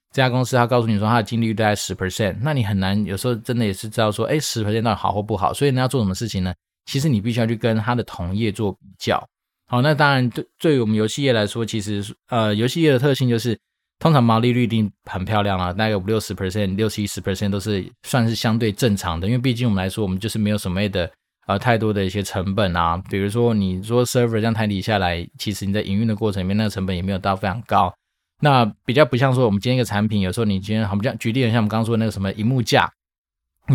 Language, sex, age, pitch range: Chinese, male, 20-39, 100-120 Hz